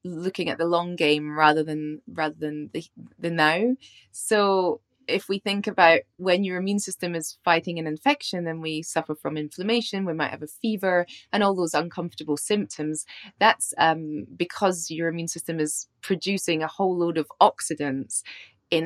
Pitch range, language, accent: 160-195 Hz, English, British